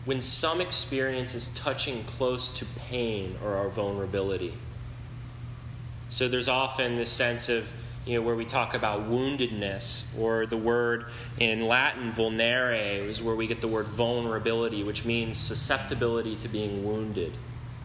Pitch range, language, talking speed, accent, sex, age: 115-125 Hz, English, 145 wpm, American, male, 30-49